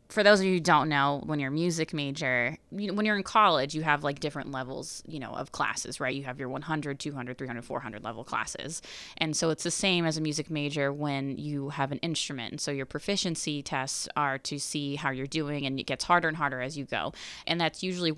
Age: 20-39